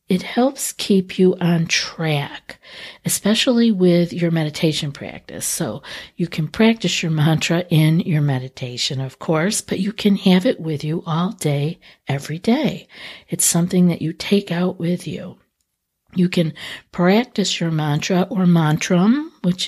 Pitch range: 155-195 Hz